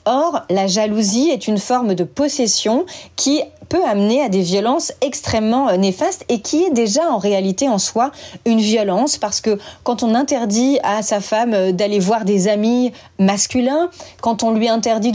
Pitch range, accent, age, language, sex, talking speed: 200-255 Hz, French, 30-49, French, female, 170 wpm